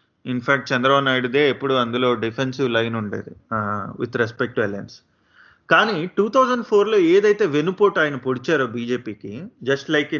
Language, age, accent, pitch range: Telugu, 30-49, native, 125-180 Hz